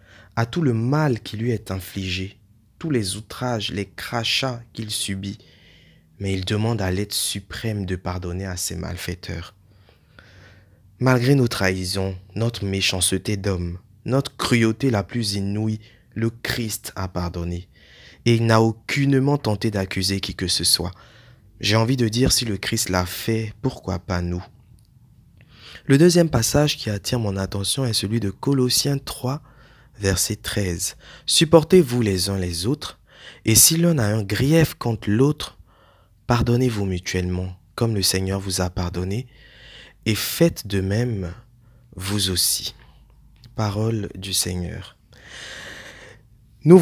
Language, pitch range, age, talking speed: French, 95-120 Hz, 20-39, 140 wpm